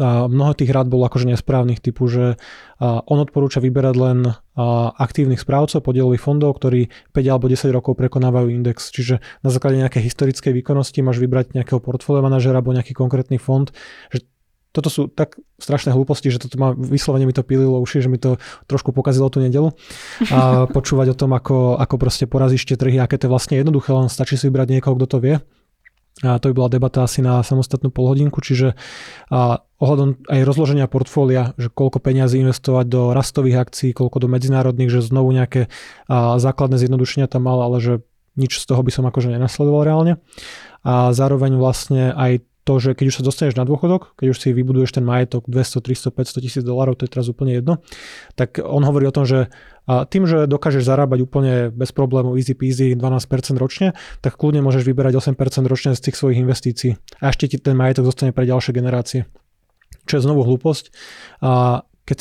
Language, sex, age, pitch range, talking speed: Slovak, male, 20-39, 125-135 Hz, 185 wpm